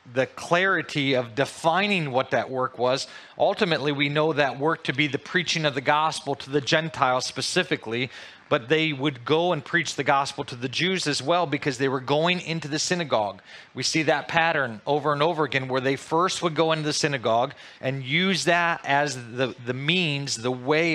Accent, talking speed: American, 200 wpm